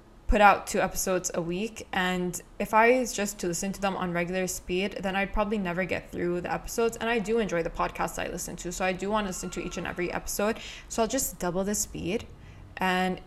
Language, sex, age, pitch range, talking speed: English, female, 20-39, 180-205 Hz, 235 wpm